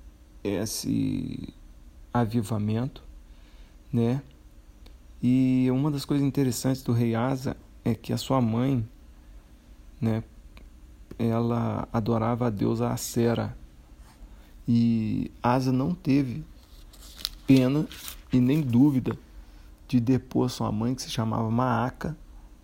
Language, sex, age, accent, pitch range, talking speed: Portuguese, male, 40-59, Brazilian, 80-125 Hz, 100 wpm